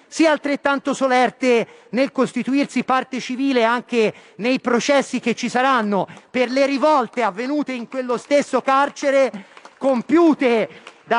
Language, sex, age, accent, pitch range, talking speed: Italian, male, 40-59, native, 230-280 Hz, 125 wpm